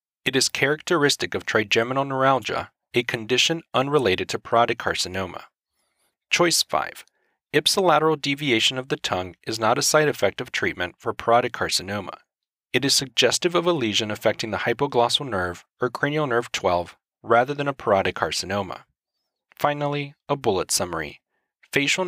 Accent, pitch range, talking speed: American, 115-150 Hz, 145 wpm